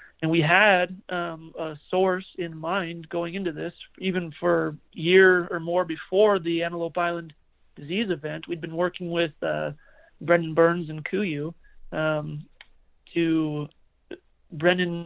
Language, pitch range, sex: English, 160-175 Hz, male